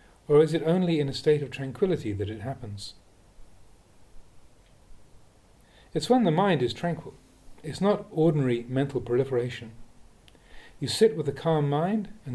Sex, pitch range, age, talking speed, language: male, 120-165 Hz, 40-59, 145 wpm, English